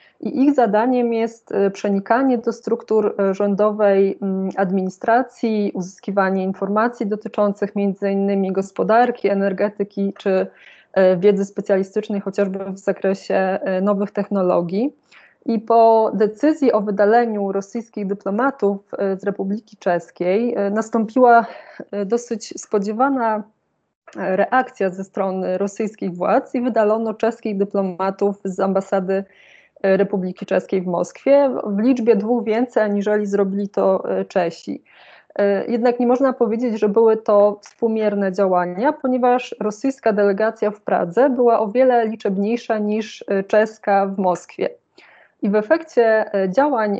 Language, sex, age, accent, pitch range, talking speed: Polish, female, 20-39, native, 195-230 Hz, 110 wpm